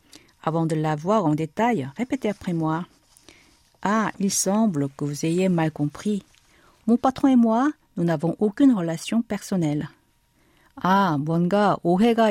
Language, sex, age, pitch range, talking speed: French, female, 50-69, 160-230 Hz, 140 wpm